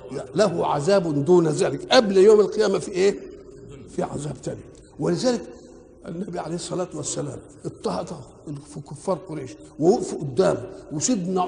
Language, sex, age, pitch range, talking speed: Arabic, male, 60-79, 160-245 Hz, 125 wpm